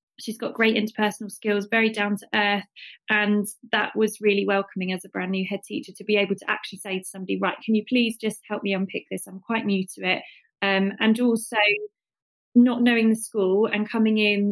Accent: British